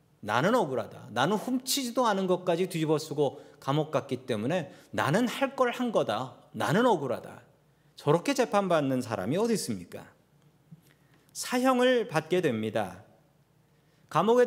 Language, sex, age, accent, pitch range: Korean, male, 40-59, native, 150-220 Hz